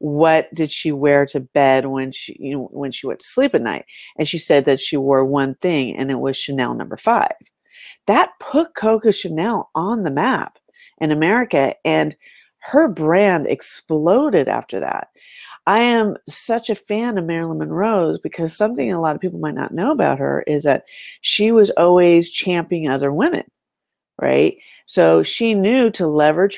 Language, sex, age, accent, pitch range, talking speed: English, female, 40-59, American, 155-215 Hz, 180 wpm